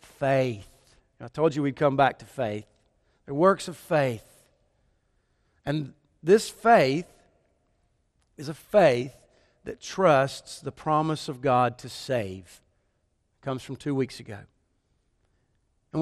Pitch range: 130-170 Hz